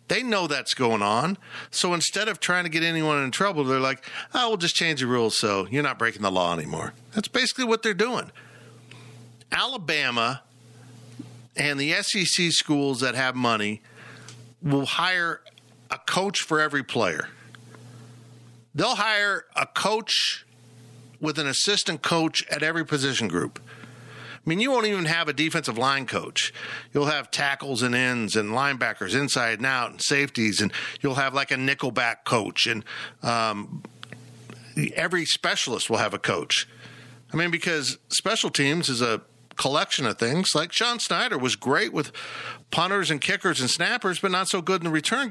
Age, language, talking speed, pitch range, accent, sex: 50-69, English, 165 wpm, 120-180 Hz, American, male